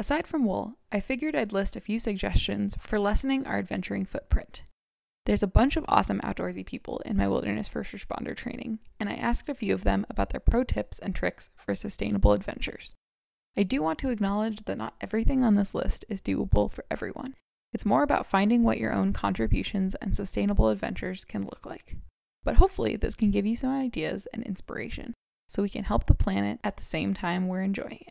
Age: 20-39